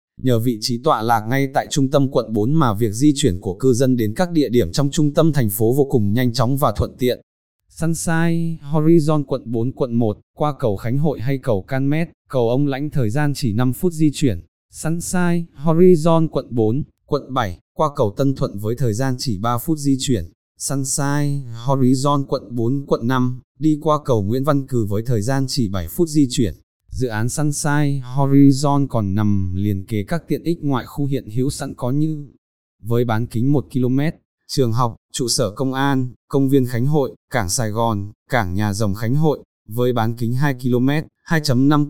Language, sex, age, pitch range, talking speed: Vietnamese, male, 20-39, 115-145 Hz, 205 wpm